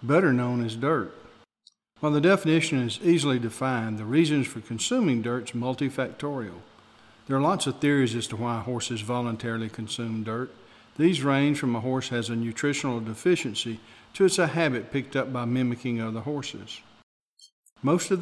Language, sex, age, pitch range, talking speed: English, male, 50-69, 115-145 Hz, 165 wpm